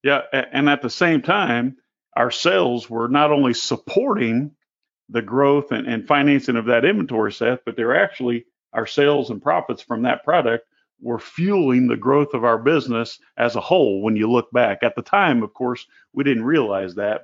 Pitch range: 120-165 Hz